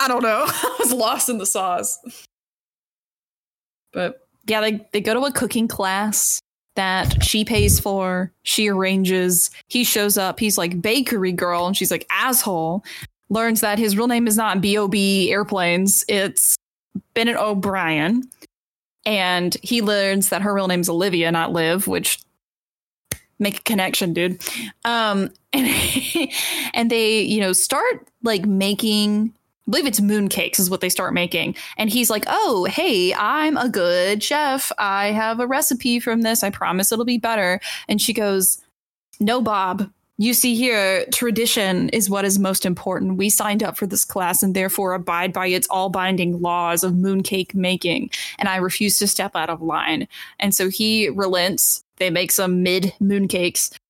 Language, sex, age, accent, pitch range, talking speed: English, female, 10-29, American, 185-230 Hz, 165 wpm